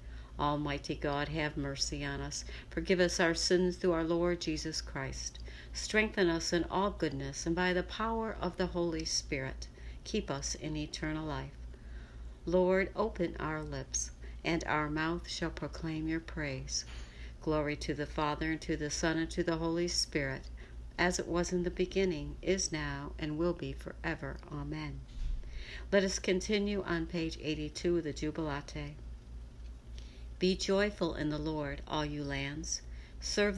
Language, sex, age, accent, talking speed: English, female, 60-79, American, 155 wpm